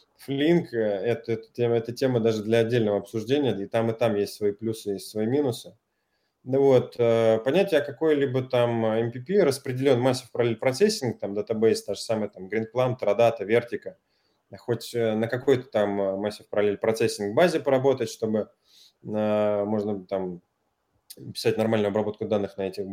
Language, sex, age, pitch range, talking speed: Russian, male, 20-39, 105-135 Hz, 155 wpm